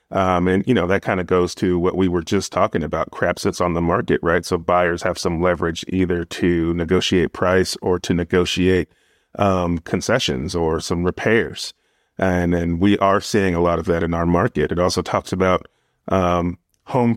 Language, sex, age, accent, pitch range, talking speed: English, male, 30-49, American, 85-100 Hz, 195 wpm